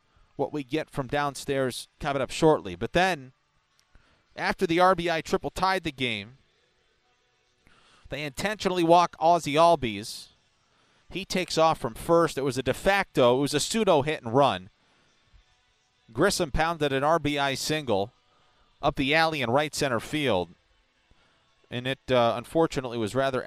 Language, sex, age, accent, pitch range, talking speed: English, male, 40-59, American, 120-165 Hz, 140 wpm